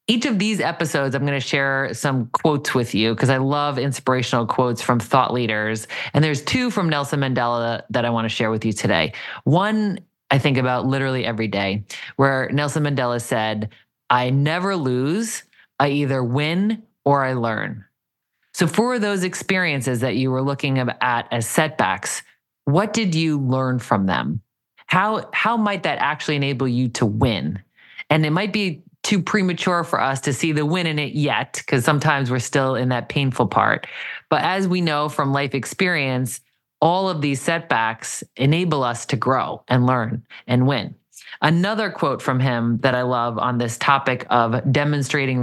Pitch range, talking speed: 125-155 Hz, 175 wpm